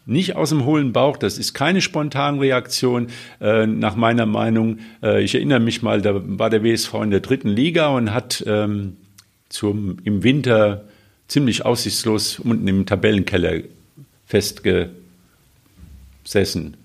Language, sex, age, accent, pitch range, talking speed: German, male, 50-69, German, 105-135 Hz, 130 wpm